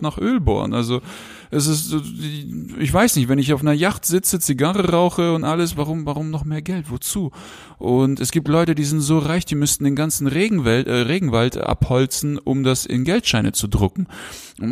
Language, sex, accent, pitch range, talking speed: German, male, German, 120-155 Hz, 190 wpm